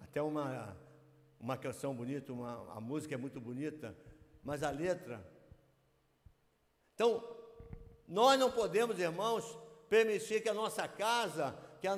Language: Portuguese